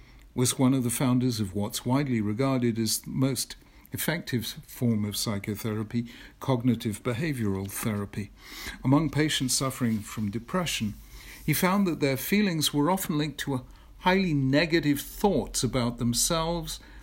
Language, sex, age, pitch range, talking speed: English, male, 50-69, 110-145 Hz, 135 wpm